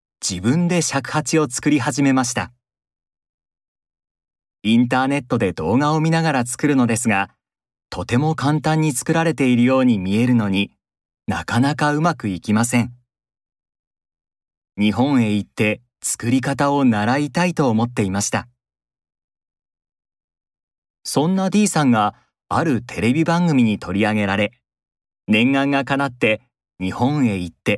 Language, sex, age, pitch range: Japanese, male, 40-59, 110-150 Hz